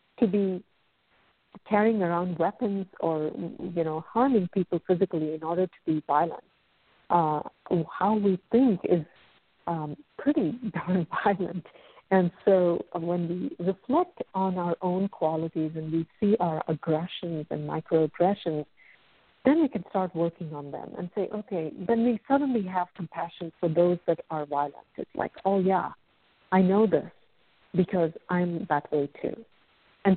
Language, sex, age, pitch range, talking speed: English, female, 50-69, 160-195 Hz, 145 wpm